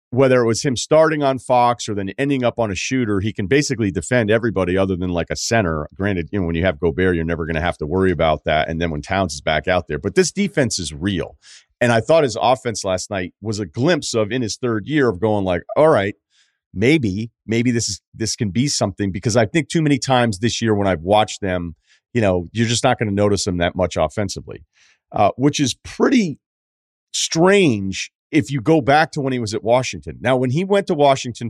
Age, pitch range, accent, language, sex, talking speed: 40-59, 90-130 Hz, American, English, male, 240 wpm